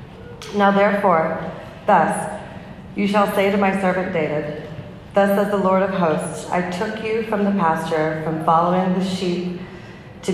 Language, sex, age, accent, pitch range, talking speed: English, female, 30-49, American, 160-190 Hz, 155 wpm